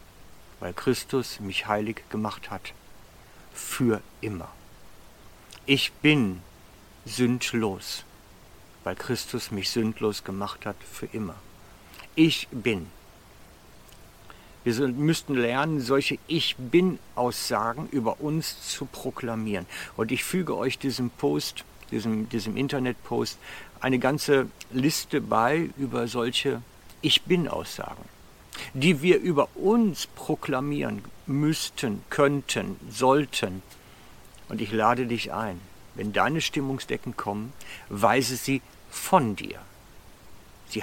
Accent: German